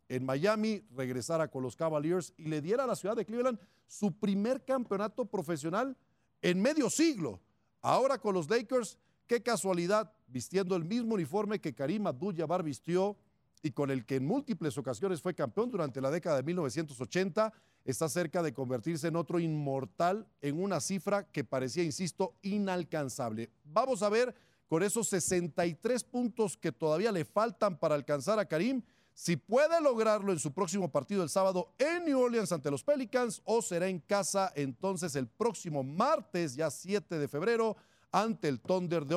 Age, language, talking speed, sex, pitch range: 40-59, Spanish, 165 wpm, male, 150-215 Hz